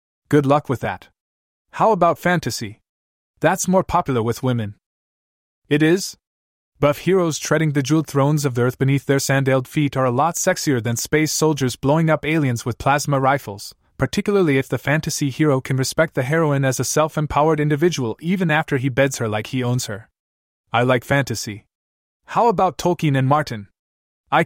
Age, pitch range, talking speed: 20-39, 115-155 Hz, 175 wpm